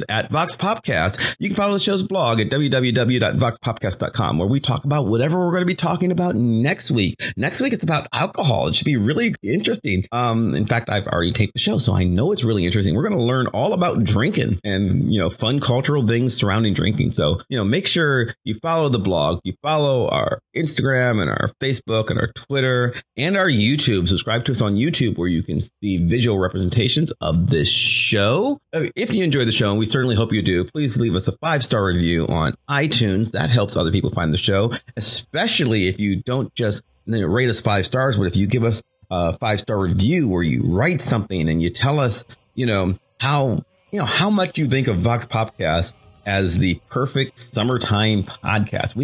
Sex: male